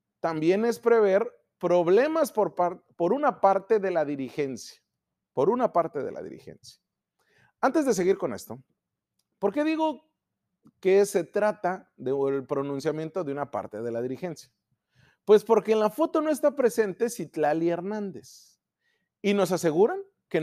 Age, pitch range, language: 40-59, 155-255 Hz, Spanish